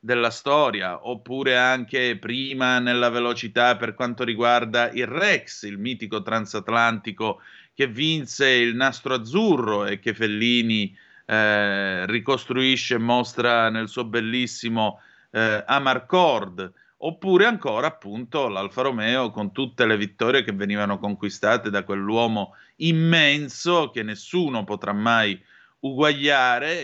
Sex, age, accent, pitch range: male, 30-49, native, 110-135 Hz